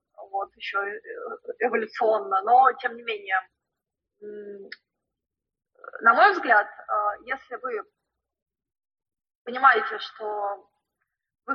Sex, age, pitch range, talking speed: female, 20-39, 225-370 Hz, 90 wpm